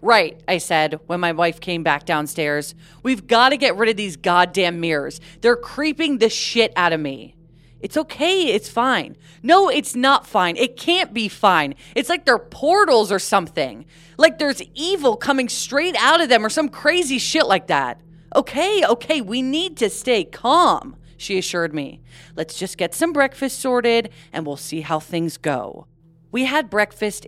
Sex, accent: female, American